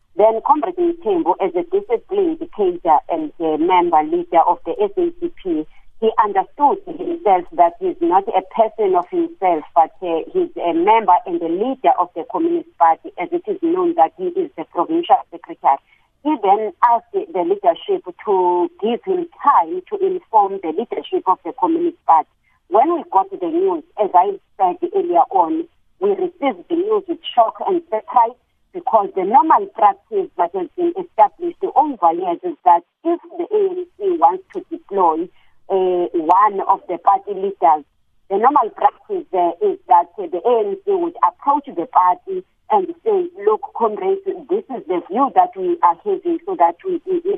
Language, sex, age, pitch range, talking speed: English, female, 50-69, 230-380 Hz, 165 wpm